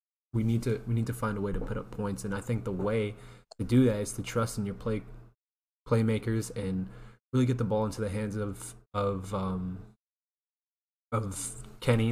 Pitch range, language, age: 100-115 Hz, English, 20-39